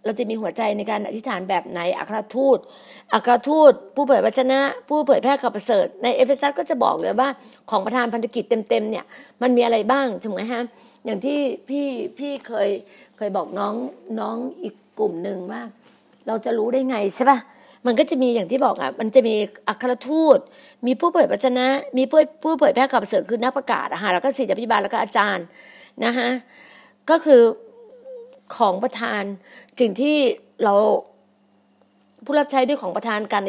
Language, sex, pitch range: Thai, female, 220-270 Hz